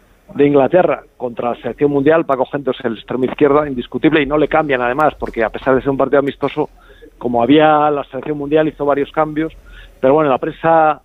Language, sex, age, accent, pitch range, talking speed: Spanish, male, 40-59, Spanish, 130-165 Hz, 205 wpm